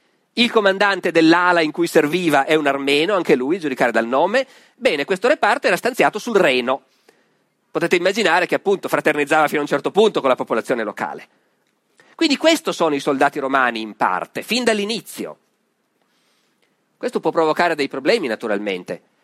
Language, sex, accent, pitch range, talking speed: Italian, male, native, 150-230 Hz, 160 wpm